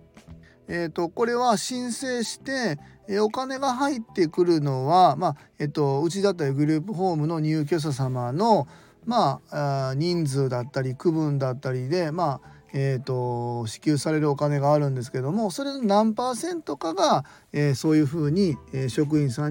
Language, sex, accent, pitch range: Japanese, male, native, 140-200 Hz